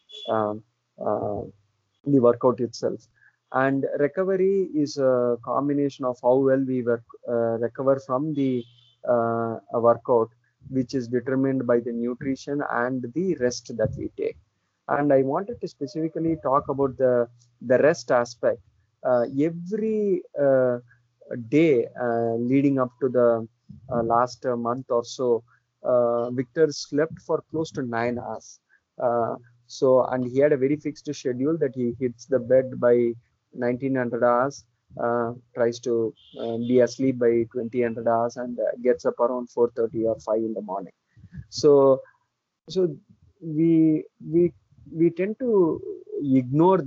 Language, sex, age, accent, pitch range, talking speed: English, male, 30-49, Indian, 120-145 Hz, 140 wpm